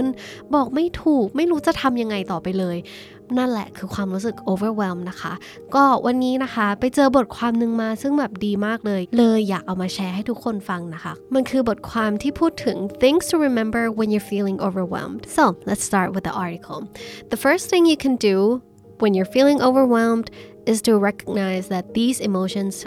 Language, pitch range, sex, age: Thai, 195-255 Hz, female, 20-39